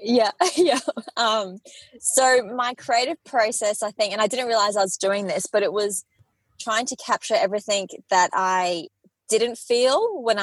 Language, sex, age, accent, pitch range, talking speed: English, female, 20-39, Australian, 180-210 Hz, 165 wpm